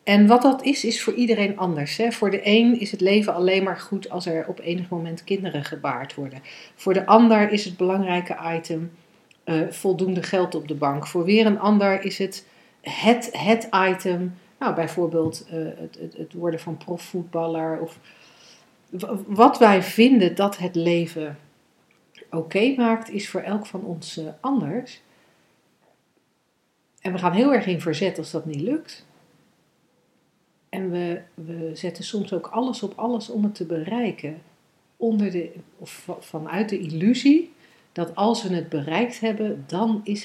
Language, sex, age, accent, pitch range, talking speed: Dutch, female, 40-59, Dutch, 165-210 Hz, 170 wpm